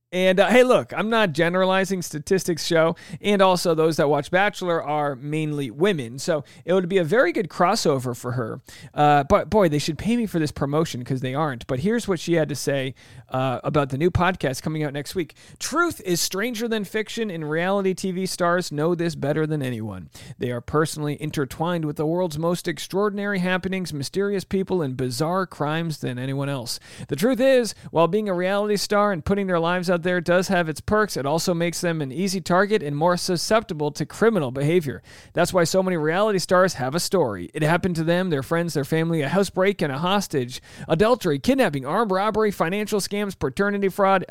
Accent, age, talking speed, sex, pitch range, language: American, 40-59, 205 wpm, male, 150-190 Hz, English